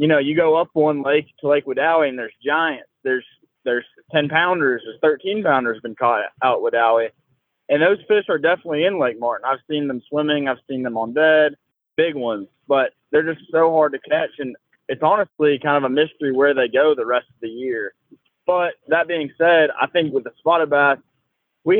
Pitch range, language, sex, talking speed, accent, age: 130-160 Hz, English, male, 210 wpm, American, 20-39